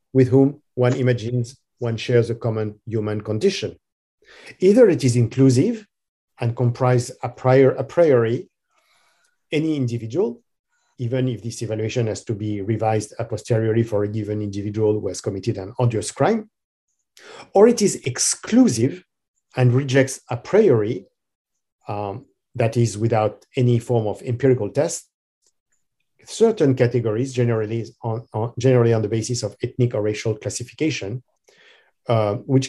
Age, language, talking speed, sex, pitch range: 50-69, English, 140 wpm, male, 110-130 Hz